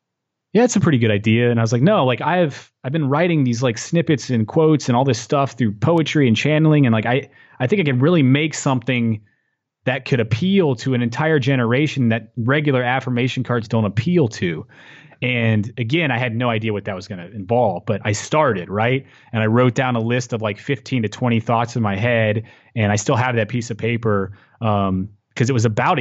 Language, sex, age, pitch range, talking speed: English, male, 30-49, 110-140 Hz, 225 wpm